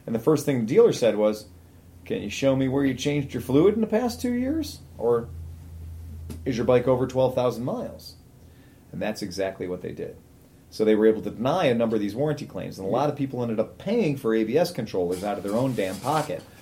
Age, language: 40-59, English